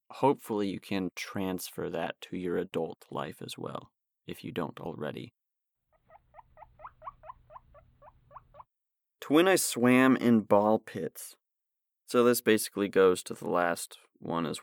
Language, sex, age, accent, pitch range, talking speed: English, male, 30-49, American, 95-115 Hz, 125 wpm